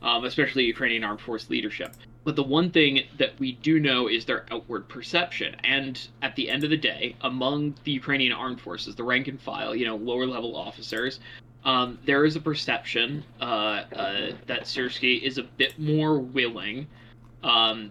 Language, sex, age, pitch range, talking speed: English, male, 20-39, 115-140 Hz, 180 wpm